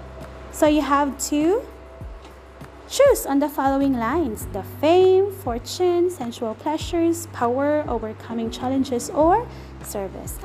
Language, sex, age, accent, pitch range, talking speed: Filipino, female, 20-39, native, 215-295 Hz, 110 wpm